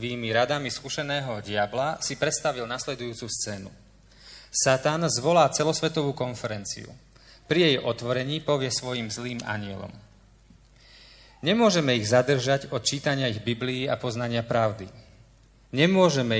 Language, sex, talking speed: Slovak, male, 110 wpm